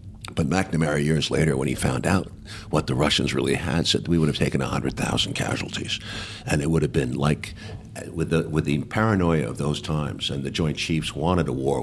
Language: English